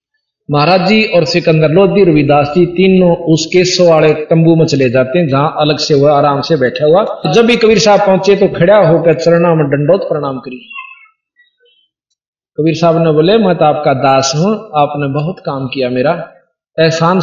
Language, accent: English, Indian